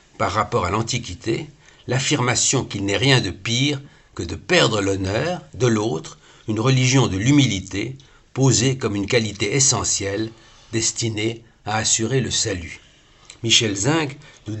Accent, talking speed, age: French, 135 wpm, 60-79